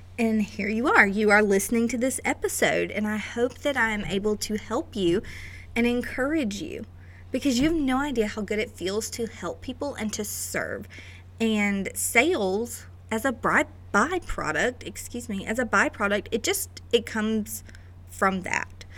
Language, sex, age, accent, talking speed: English, female, 30-49, American, 170 wpm